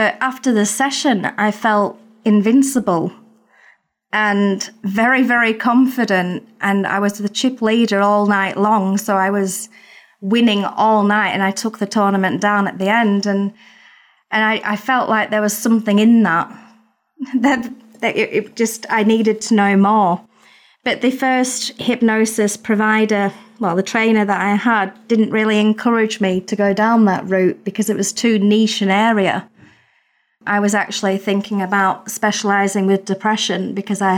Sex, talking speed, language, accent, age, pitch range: female, 160 wpm, English, British, 30-49, 200-225 Hz